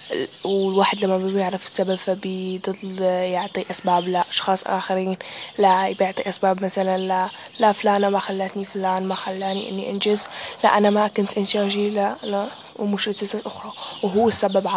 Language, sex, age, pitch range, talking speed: Arabic, female, 20-39, 190-205 Hz, 145 wpm